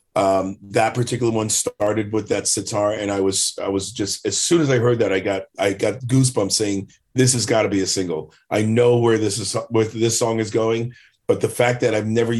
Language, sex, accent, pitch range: English, male, American, 100-115 Hz